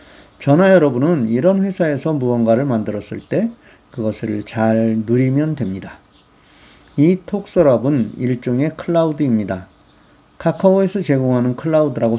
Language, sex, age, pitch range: Korean, male, 50-69, 115-165 Hz